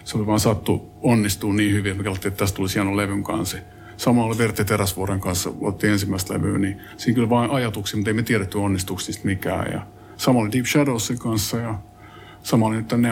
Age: 50-69